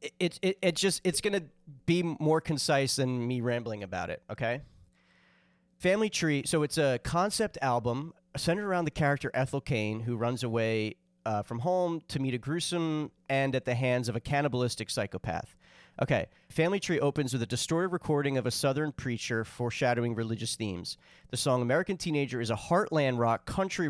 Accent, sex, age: American, male, 30-49